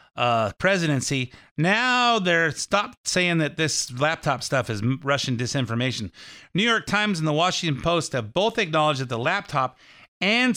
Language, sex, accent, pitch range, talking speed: English, male, American, 135-180 Hz, 155 wpm